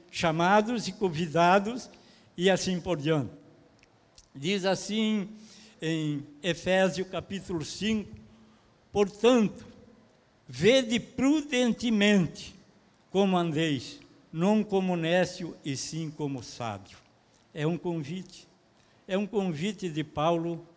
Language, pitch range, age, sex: Portuguese, 145-215 Hz, 60-79, male